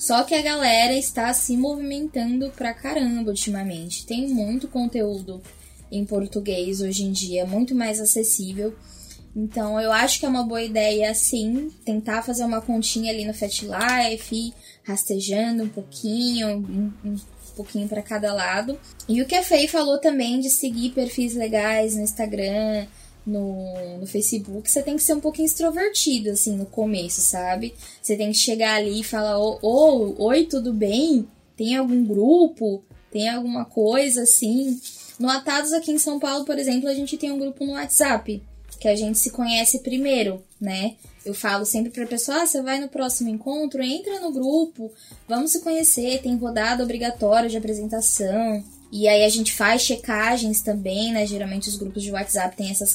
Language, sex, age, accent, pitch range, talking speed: Portuguese, female, 10-29, Brazilian, 210-265 Hz, 175 wpm